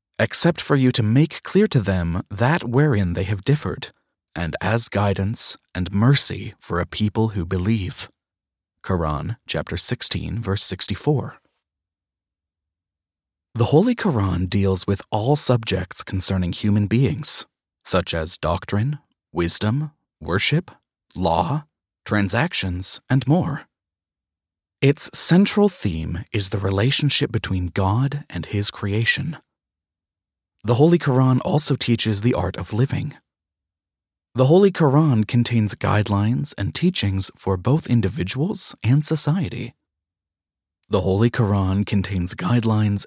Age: 30-49